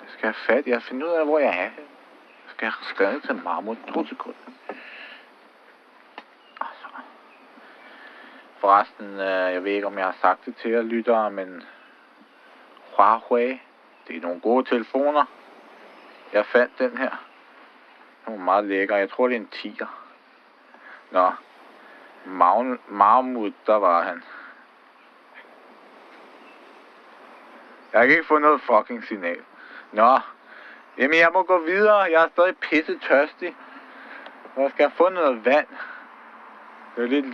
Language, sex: Danish, male